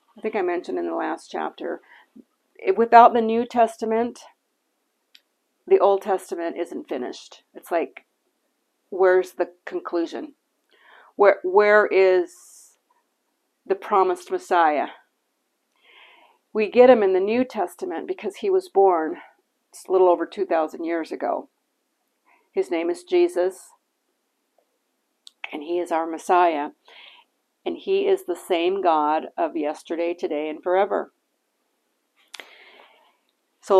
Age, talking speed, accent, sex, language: 50-69, 120 wpm, American, female, English